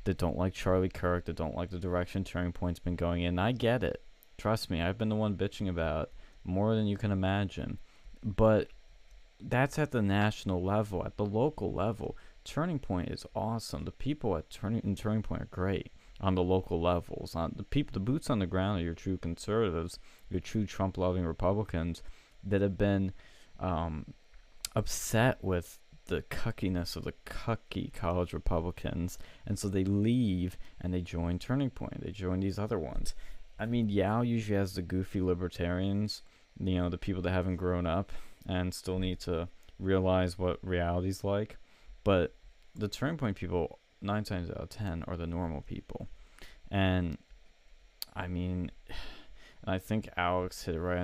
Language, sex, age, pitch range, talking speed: English, male, 20-39, 90-105 Hz, 175 wpm